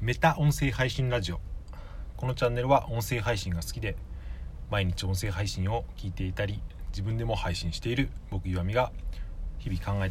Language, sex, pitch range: Japanese, male, 80-110 Hz